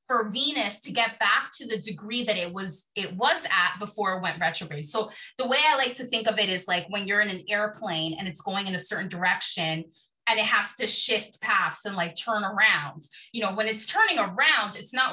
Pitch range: 190-245 Hz